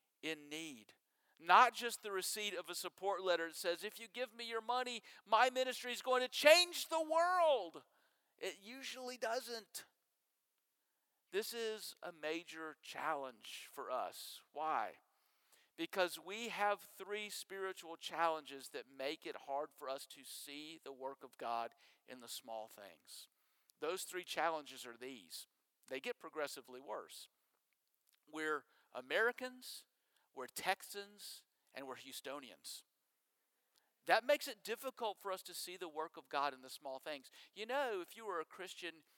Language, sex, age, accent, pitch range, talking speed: English, male, 50-69, American, 155-240 Hz, 150 wpm